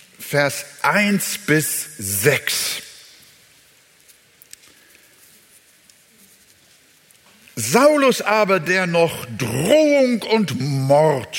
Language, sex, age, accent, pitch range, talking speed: German, male, 60-79, German, 120-180 Hz, 60 wpm